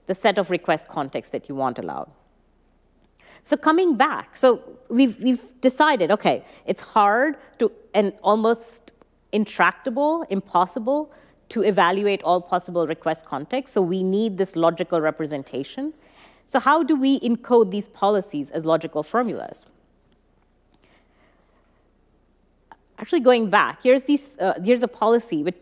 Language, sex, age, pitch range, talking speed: English, female, 30-49, 180-250 Hz, 130 wpm